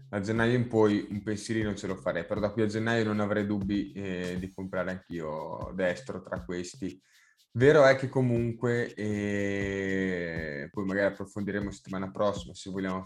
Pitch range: 100-115 Hz